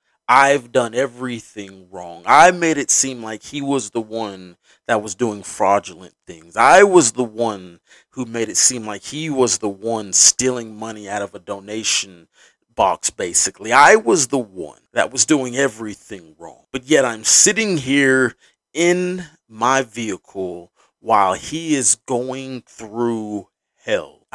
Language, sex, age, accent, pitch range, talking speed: English, male, 30-49, American, 105-140 Hz, 155 wpm